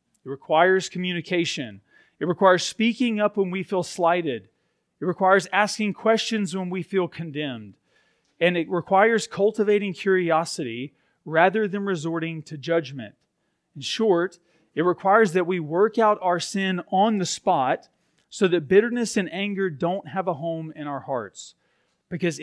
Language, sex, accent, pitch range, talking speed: English, male, American, 150-190 Hz, 145 wpm